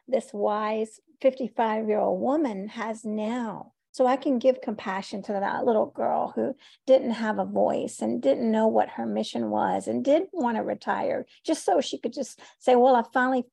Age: 50-69